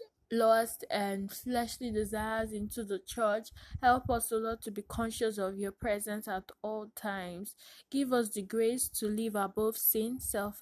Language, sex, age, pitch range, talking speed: English, female, 10-29, 200-230 Hz, 160 wpm